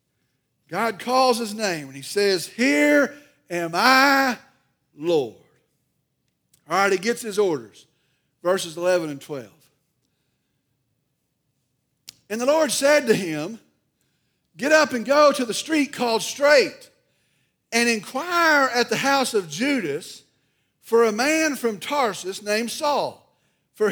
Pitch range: 180-265 Hz